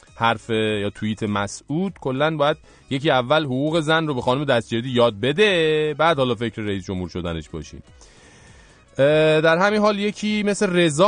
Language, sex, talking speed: English, male, 155 wpm